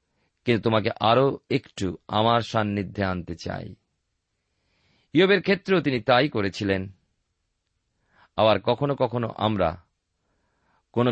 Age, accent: 40-59, native